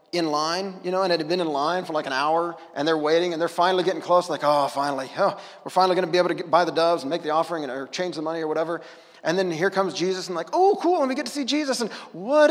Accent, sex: American, male